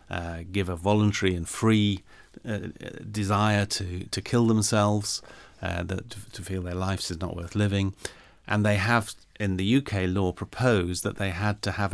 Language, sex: English, male